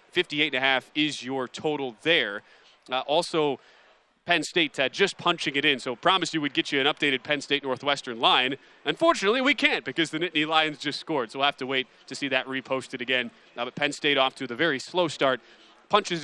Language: English